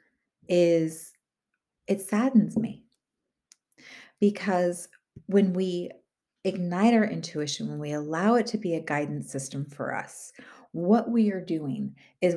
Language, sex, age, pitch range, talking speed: English, female, 30-49, 155-200 Hz, 125 wpm